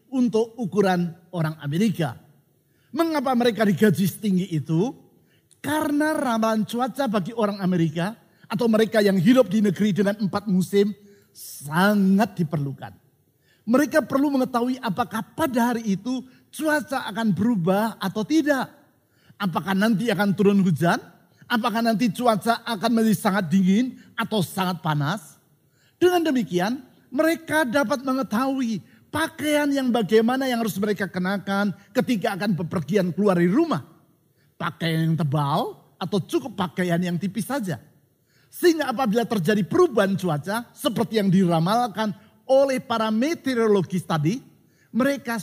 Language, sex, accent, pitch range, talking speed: Indonesian, male, native, 185-245 Hz, 125 wpm